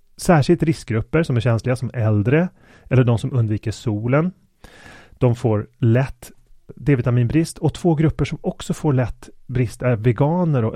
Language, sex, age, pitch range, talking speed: Swedish, male, 30-49, 115-145 Hz, 150 wpm